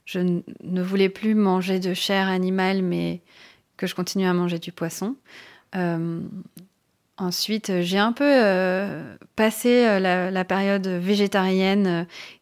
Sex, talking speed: female, 135 wpm